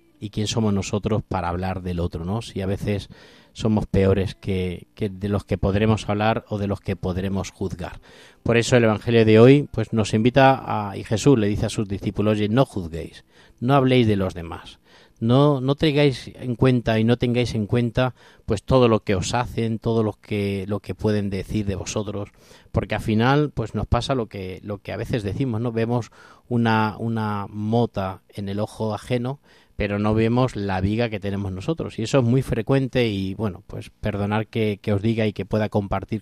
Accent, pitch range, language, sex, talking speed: Spanish, 100-120 Hz, Spanish, male, 205 wpm